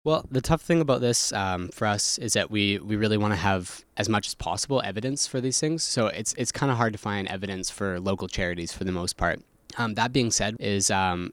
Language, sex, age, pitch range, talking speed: English, male, 20-39, 90-115 Hz, 245 wpm